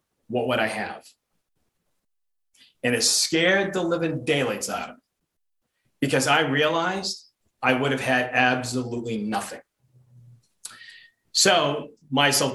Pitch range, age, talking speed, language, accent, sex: 120-145 Hz, 40-59, 115 wpm, English, American, male